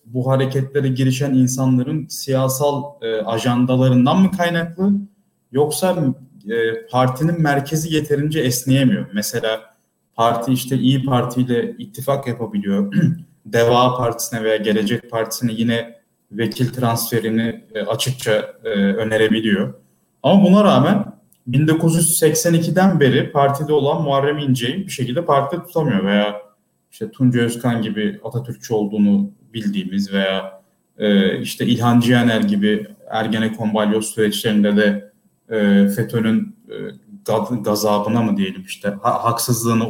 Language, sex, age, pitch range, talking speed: Turkish, male, 30-49, 115-155 Hz, 110 wpm